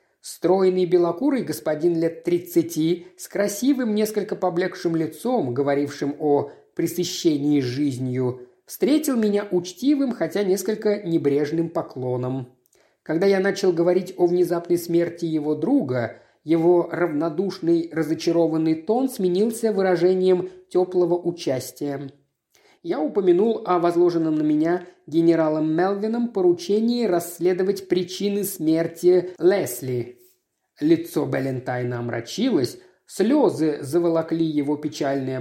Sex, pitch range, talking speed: male, 155-205 Hz, 100 wpm